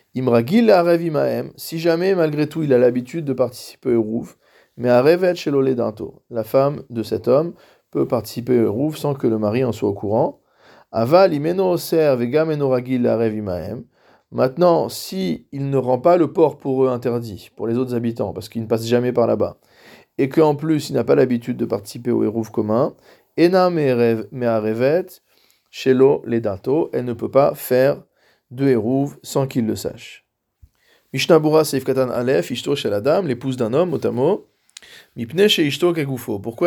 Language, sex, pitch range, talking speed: French, male, 120-160 Hz, 160 wpm